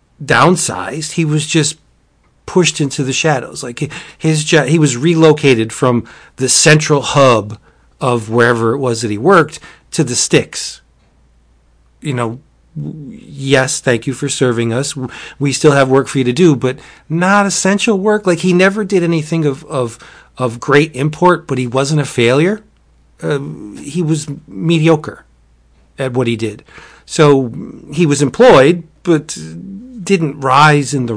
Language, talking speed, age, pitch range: English, 150 wpm, 40-59, 125-160 Hz